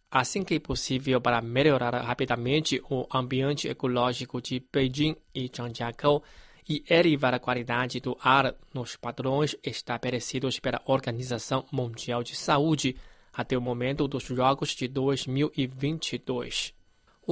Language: Chinese